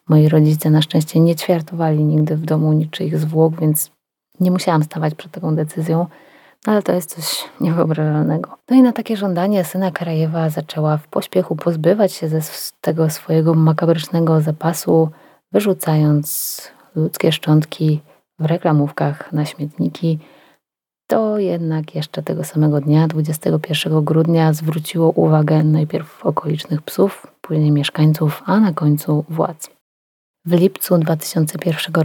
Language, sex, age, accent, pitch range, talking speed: Polish, female, 30-49, native, 155-175 Hz, 125 wpm